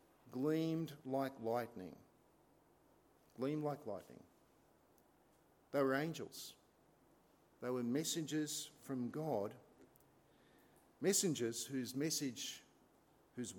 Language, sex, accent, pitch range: English, male, Australian, 115-160 Hz